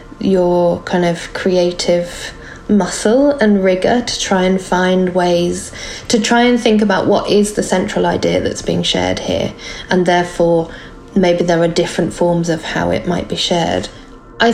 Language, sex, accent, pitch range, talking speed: English, female, British, 175-210 Hz, 165 wpm